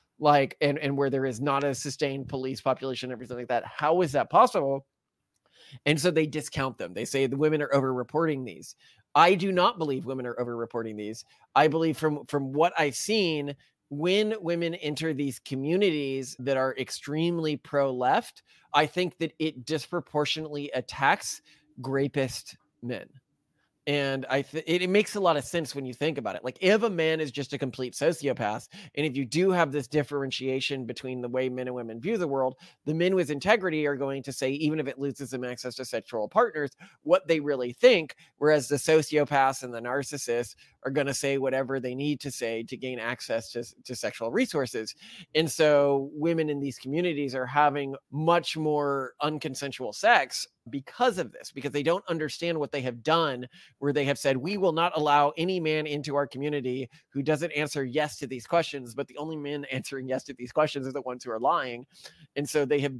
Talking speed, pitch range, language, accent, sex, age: 200 wpm, 130-155 Hz, English, American, male, 30-49